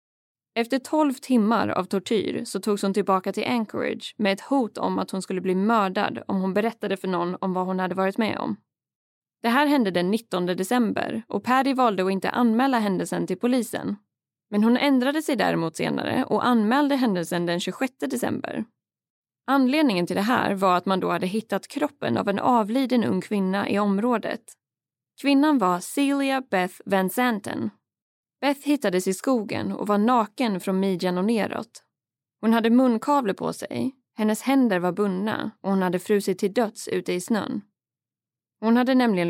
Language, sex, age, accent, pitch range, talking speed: Swedish, female, 20-39, native, 185-245 Hz, 175 wpm